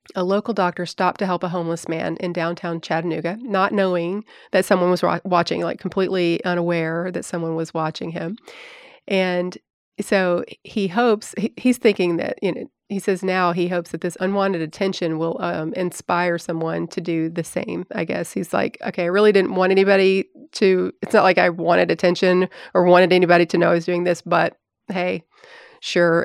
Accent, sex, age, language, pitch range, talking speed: American, female, 30-49, English, 170-195 Hz, 185 wpm